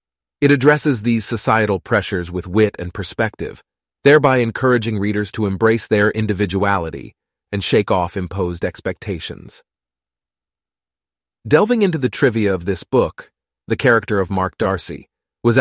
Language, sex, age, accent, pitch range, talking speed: English, male, 30-49, American, 95-120 Hz, 130 wpm